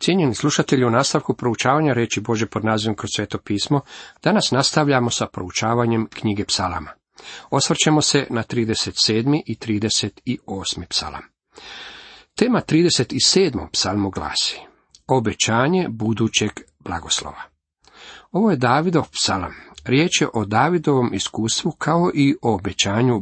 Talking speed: 115 wpm